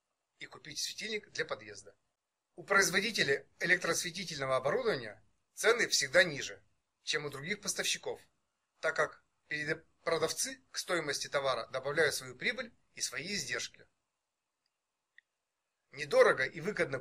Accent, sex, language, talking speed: native, male, Russian, 110 wpm